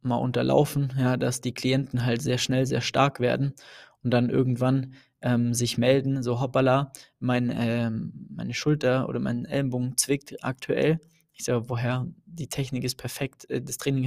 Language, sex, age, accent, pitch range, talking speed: German, male, 20-39, German, 120-135 Hz, 165 wpm